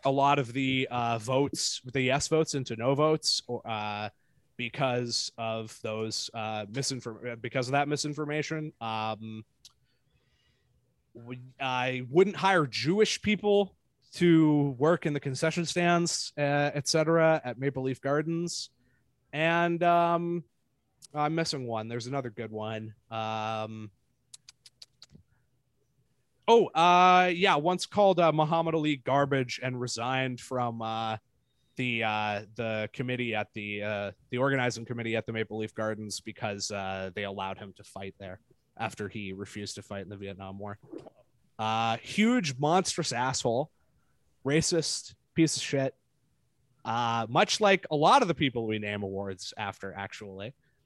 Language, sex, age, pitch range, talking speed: English, male, 20-39, 110-150 Hz, 140 wpm